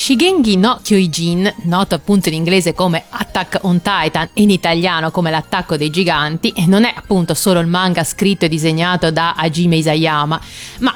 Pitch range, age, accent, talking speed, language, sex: 165-220 Hz, 30-49, native, 170 wpm, Italian, female